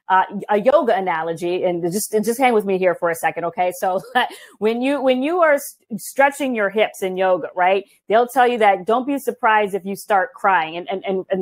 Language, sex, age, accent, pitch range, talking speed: English, female, 30-49, American, 180-235 Hz, 220 wpm